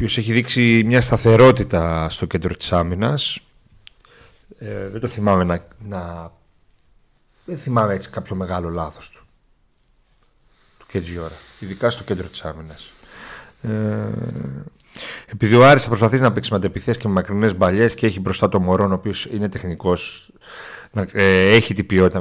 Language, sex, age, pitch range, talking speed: Greek, male, 40-59, 90-115 Hz, 150 wpm